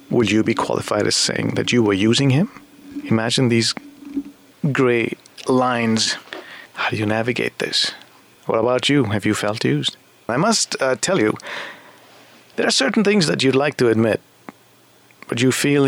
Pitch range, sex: 110-140 Hz, male